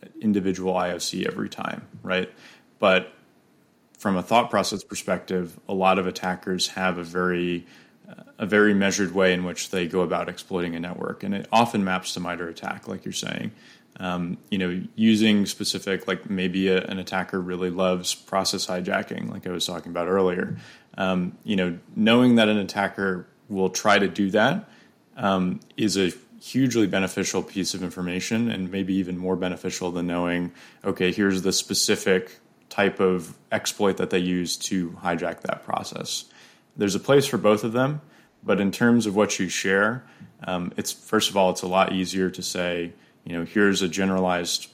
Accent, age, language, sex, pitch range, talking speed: American, 20-39, English, male, 90-100 Hz, 175 wpm